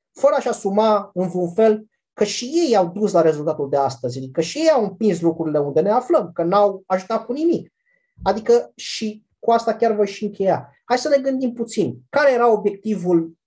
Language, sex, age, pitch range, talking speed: Romanian, male, 30-49, 175-250 Hz, 200 wpm